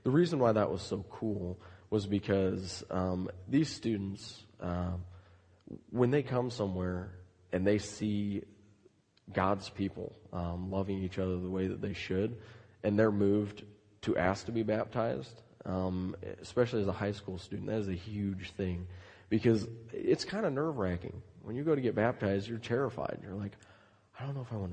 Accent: American